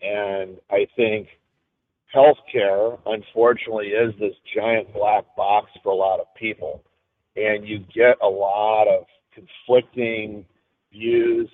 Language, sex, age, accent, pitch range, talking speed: English, male, 50-69, American, 110-130 Hz, 120 wpm